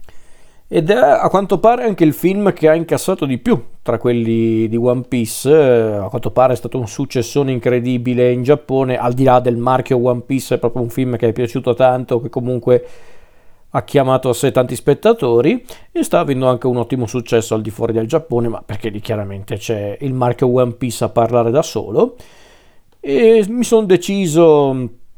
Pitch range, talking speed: 115-145 Hz, 190 wpm